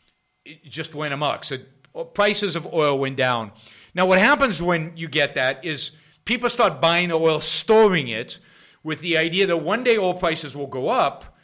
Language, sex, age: English, male, 50-69